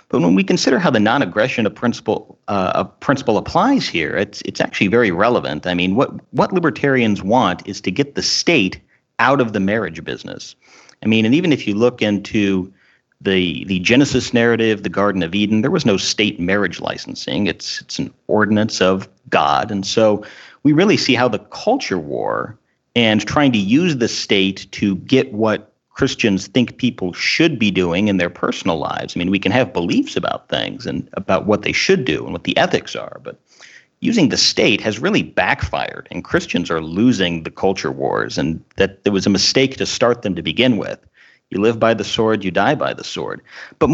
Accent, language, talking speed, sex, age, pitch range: American, English, 200 wpm, male, 40-59, 95-125 Hz